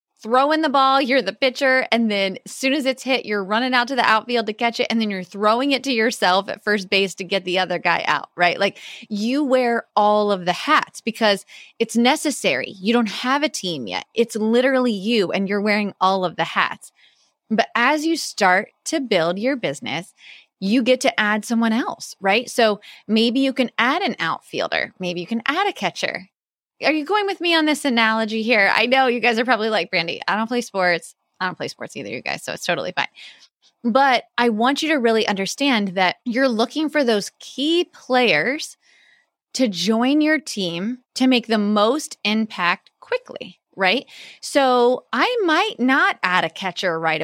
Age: 20-39